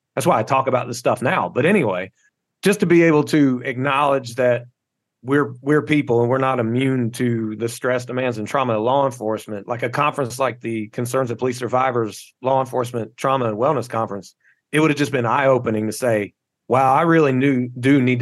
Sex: male